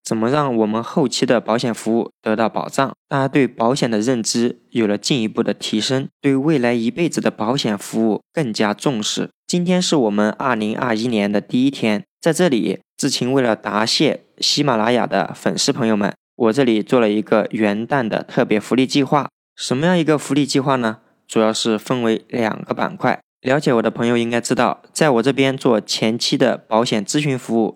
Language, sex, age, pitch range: Chinese, male, 20-39, 110-140 Hz